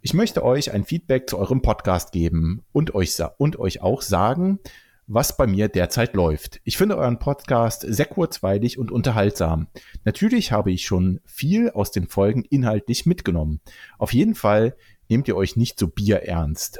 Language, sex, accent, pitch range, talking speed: German, male, German, 95-130 Hz, 165 wpm